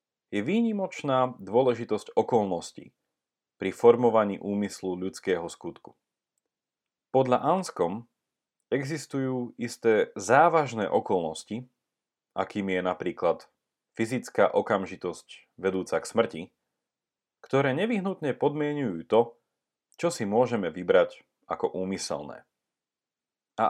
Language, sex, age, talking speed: Slovak, male, 40-59, 85 wpm